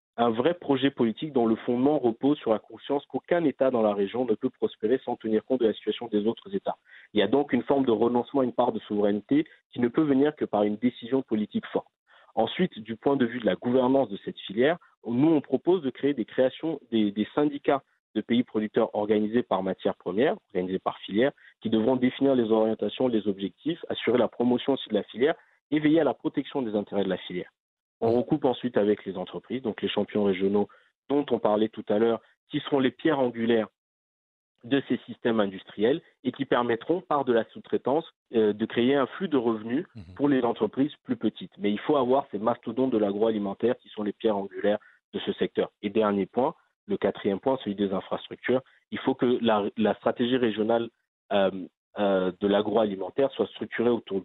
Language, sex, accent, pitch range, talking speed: French, male, French, 105-135 Hz, 210 wpm